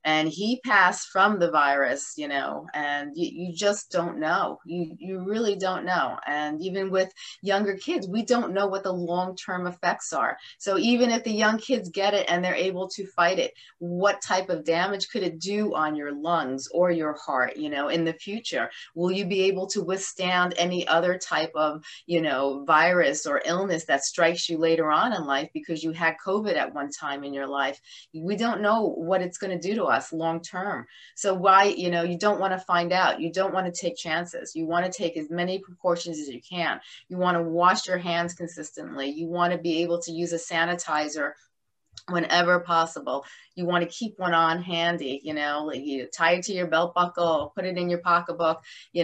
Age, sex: 30-49, female